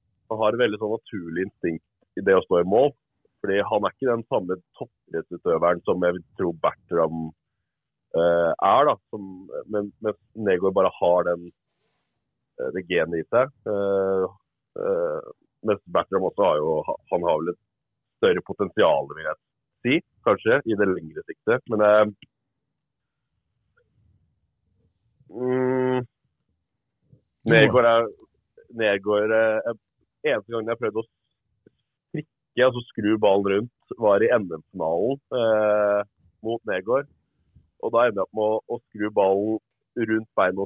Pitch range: 100-125 Hz